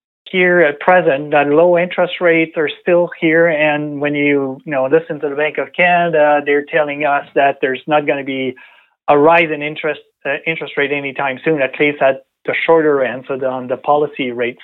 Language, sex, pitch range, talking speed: English, male, 140-165 Hz, 205 wpm